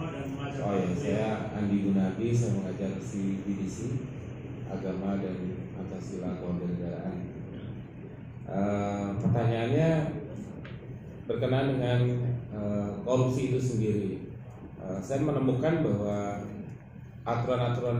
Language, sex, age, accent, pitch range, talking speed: Indonesian, male, 20-39, native, 105-135 Hz, 85 wpm